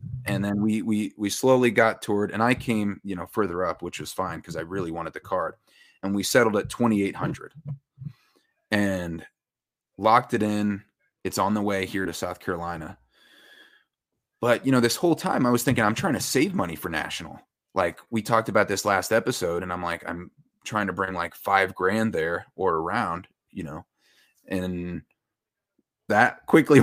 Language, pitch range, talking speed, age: English, 95-125 Hz, 185 wpm, 30-49